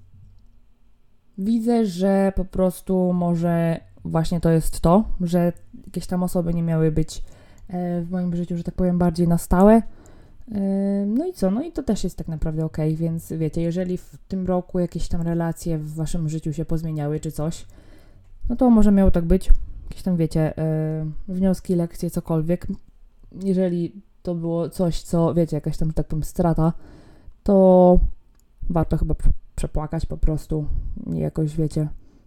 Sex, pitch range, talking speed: female, 155-185 Hz, 155 wpm